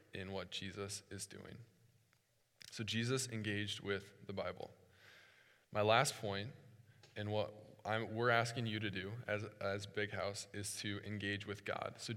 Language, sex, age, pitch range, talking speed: English, male, 20-39, 105-120 Hz, 160 wpm